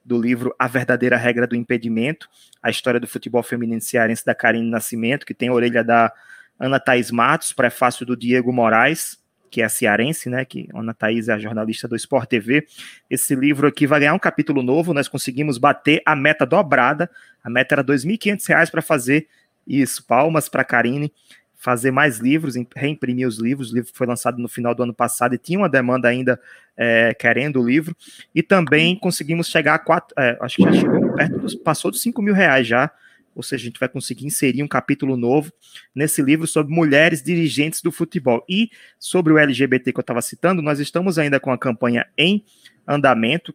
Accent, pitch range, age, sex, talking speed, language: Brazilian, 120-155 Hz, 20-39, male, 195 wpm, Portuguese